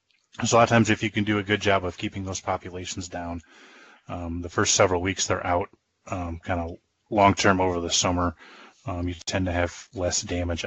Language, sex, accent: English, male, American